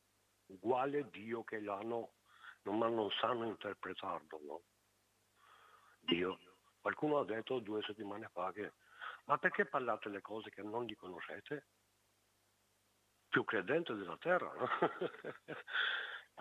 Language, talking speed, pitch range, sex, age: Italian, 115 wpm, 100-130 Hz, male, 60-79